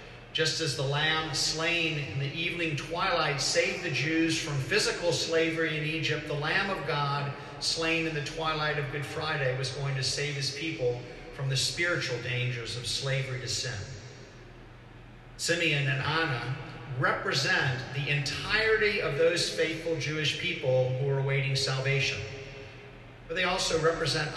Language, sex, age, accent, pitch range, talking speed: English, male, 50-69, American, 130-160 Hz, 150 wpm